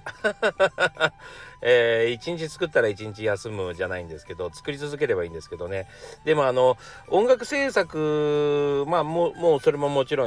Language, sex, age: Japanese, male, 40-59